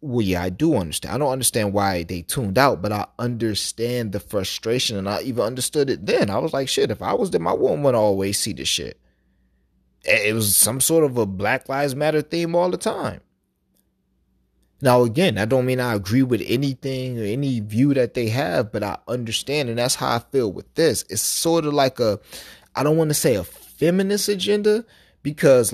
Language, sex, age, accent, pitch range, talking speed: English, male, 30-49, American, 100-150 Hz, 210 wpm